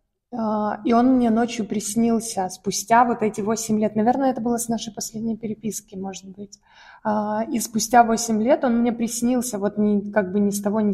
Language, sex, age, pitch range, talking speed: Russian, female, 20-39, 210-255 Hz, 180 wpm